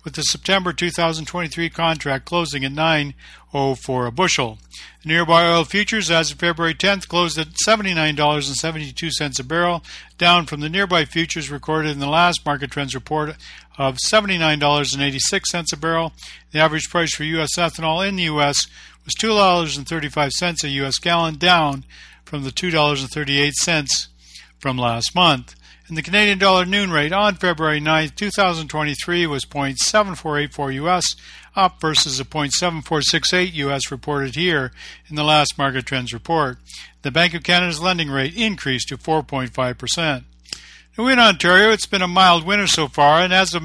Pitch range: 145-175 Hz